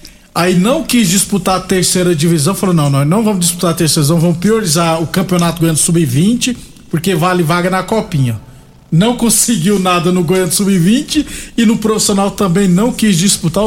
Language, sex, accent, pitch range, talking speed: Portuguese, male, Brazilian, 165-210 Hz, 175 wpm